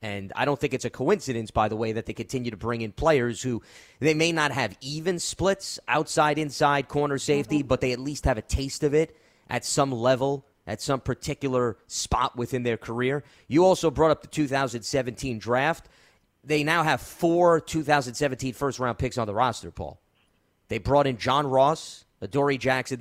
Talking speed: 190 wpm